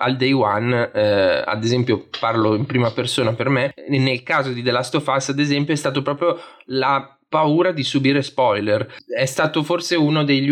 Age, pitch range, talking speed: 20-39, 120-145 Hz, 195 wpm